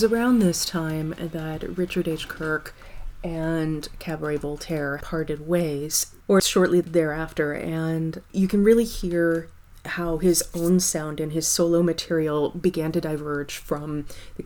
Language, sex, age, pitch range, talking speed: English, female, 30-49, 155-180 Hz, 135 wpm